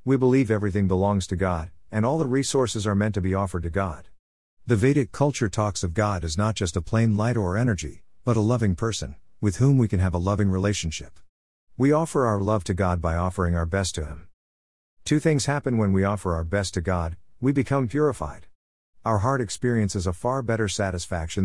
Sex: male